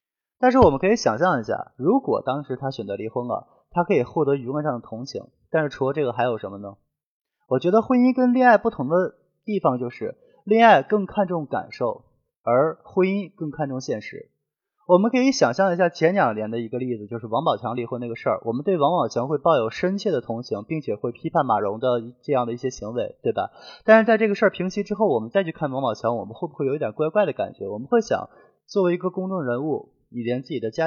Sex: male